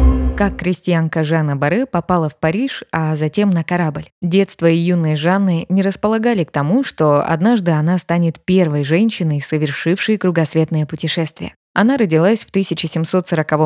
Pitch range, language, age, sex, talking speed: 155-200 Hz, Russian, 20-39, female, 140 wpm